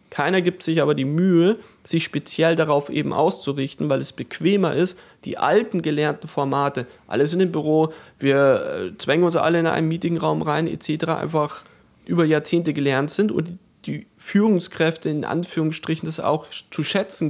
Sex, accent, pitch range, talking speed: male, German, 150-175 Hz, 160 wpm